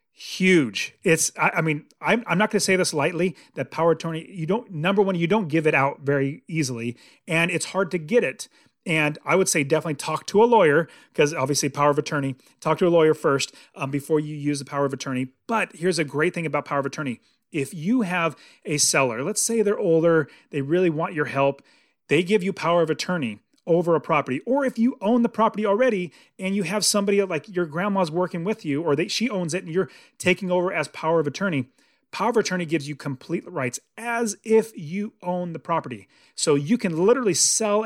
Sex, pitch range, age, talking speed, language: male, 150-205 Hz, 30-49, 225 wpm, English